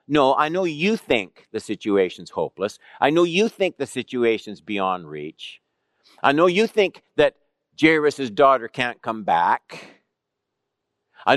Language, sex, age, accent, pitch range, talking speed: English, male, 50-69, American, 95-140 Hz, 145 wpm